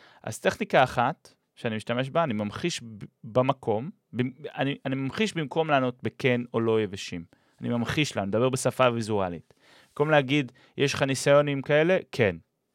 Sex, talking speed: male, 160 wpm